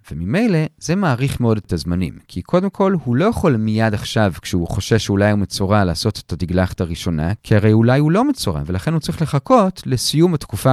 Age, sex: 40-59, male